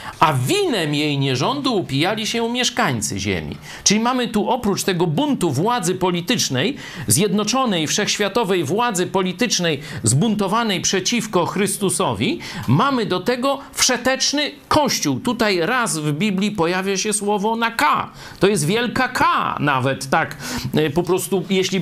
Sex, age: male, 50-69